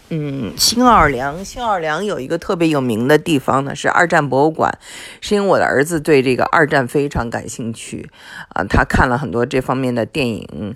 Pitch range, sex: 115-155 Hz, female